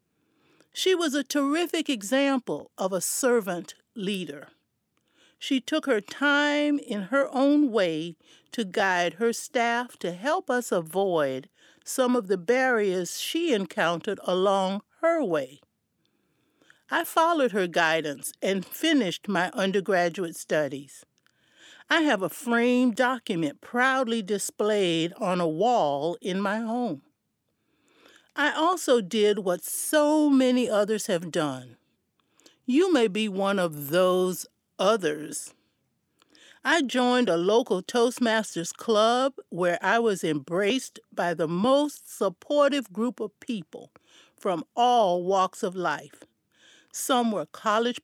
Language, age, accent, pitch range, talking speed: English, 60-79, American, 190-265 Hz, 120 wpm